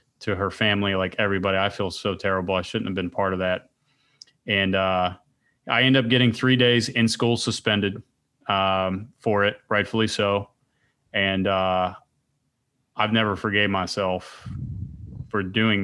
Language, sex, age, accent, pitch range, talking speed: English, male, 30-49, American, 100-115 Hz, 150 wpm